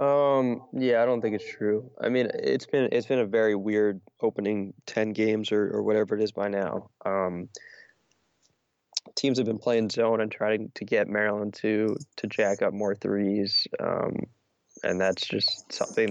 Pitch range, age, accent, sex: 105-120 Hz, 20-39, American, male